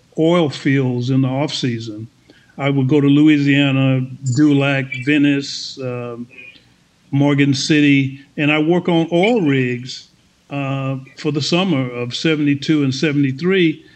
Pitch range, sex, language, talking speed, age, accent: 145-190 Hz, male, English, 130 wpm, 50-69, American